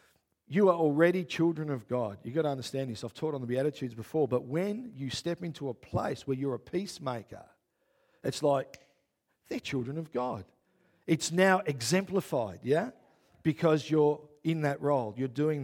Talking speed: 175 wpm